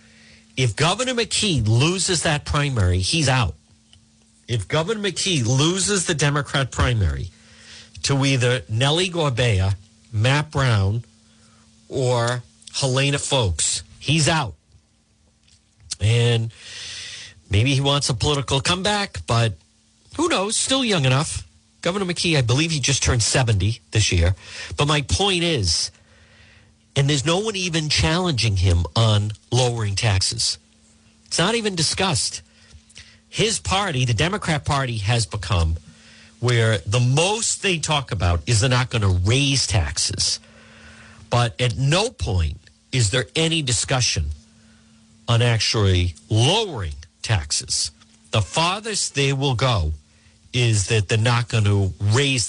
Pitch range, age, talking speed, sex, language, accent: 105-140 Hz, 50-69, 125 wpm, male, English, American